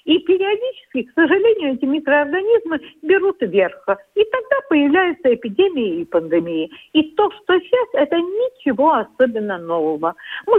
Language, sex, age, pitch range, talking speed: Russian, female, 50-69, 200-330 Hz, 130 wpm